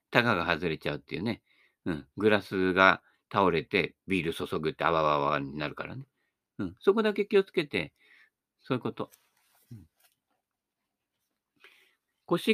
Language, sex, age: Japanese, male, 50-69